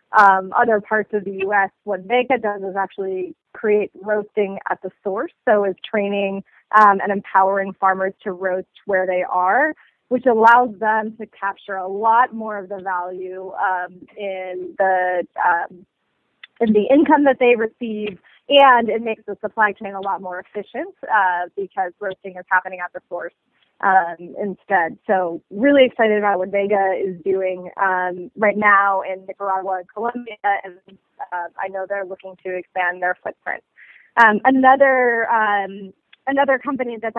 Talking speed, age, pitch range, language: 160 wpm, 30-49, 190-225 Hz, English